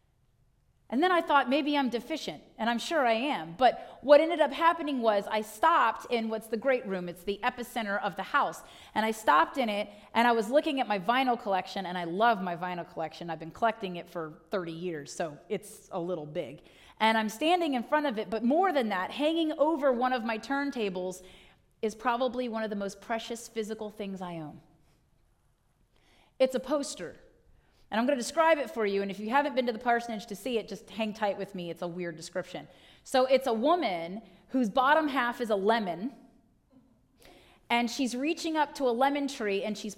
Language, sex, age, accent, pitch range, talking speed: English, female, 30-49, American, 200-260 Hz, 210 wpm